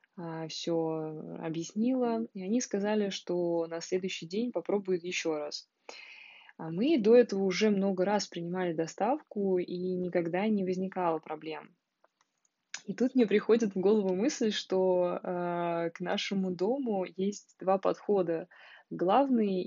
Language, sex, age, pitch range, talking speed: Russian, female, 20-39, 180-220 Hz, 125 wpm